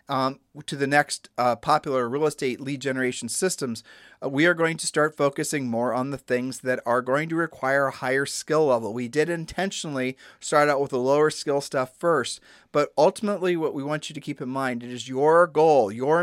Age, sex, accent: 40-59, male, American